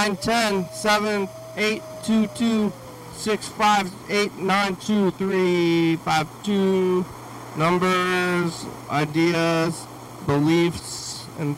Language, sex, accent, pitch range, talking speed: English, male, American, 140-195 Hz, 95 wpm